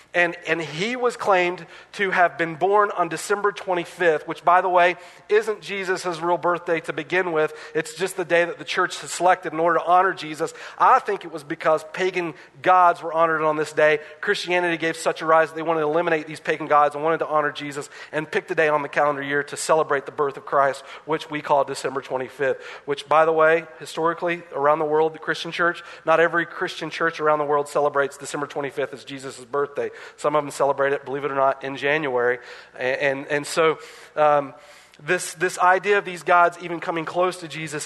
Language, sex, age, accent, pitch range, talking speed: English, male, 40-59, American, 145-175 Hz, 215 wpm